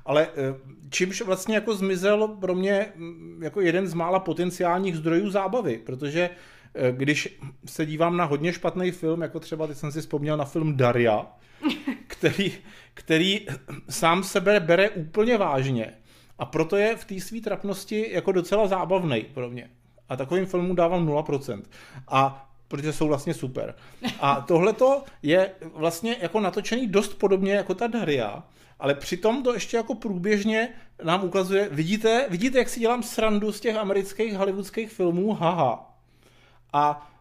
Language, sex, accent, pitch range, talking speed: Czech, male, native, 155-200 Hz, 150 wpm